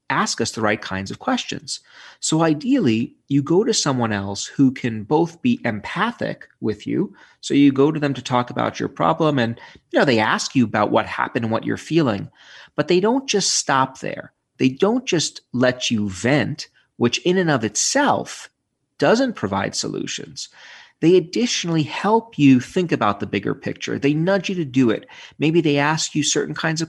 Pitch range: 120-170 Hz